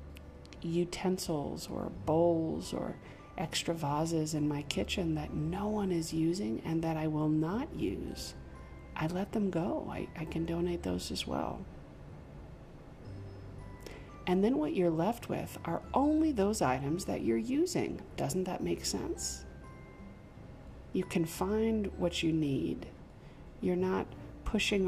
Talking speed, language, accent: 135 wpm, English, American